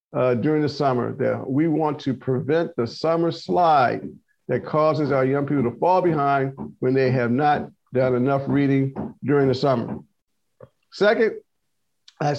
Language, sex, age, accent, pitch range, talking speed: English, male, 50-69, American, 130-175 Hz, 155 wpm